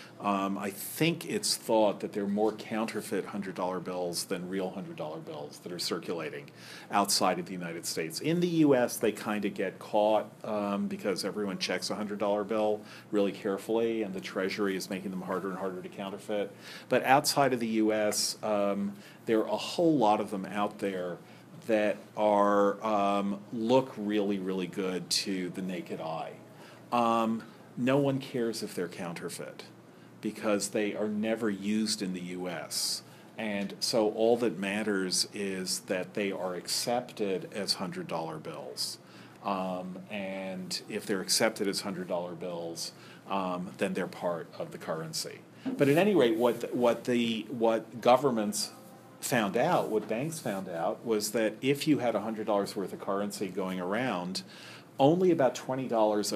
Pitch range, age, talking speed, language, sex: 95-115 Hz, 40-59, 160 wpm, English, male